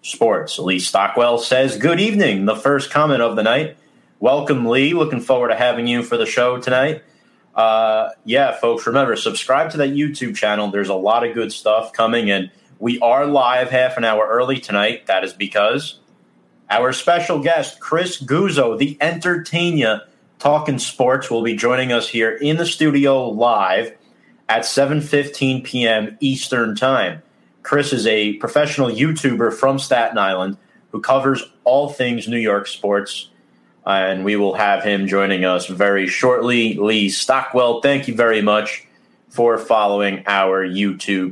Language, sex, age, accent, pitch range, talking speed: English, male, 30-49, American, 105-140 Hz, 155 wpm